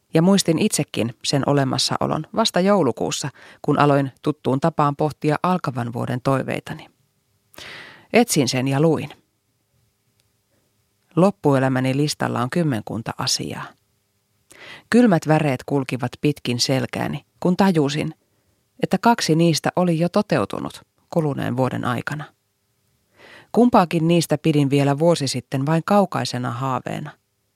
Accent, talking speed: native, 105 wpm